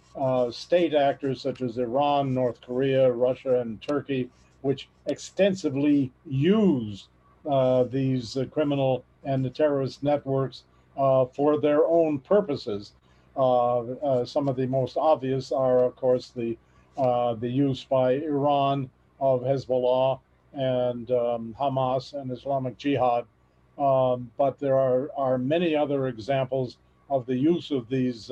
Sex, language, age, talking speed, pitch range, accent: male, English, 50-69, 135 wpm, 125-140 Hz, American